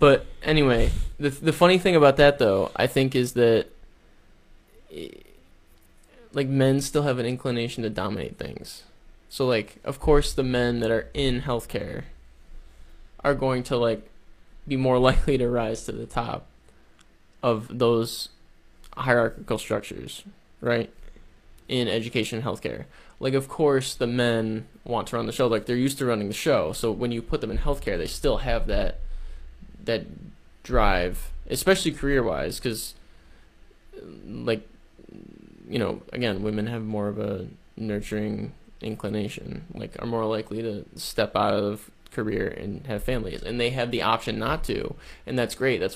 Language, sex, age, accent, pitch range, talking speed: English, male, 20-39, American, 105-130 Hz, 155 wpm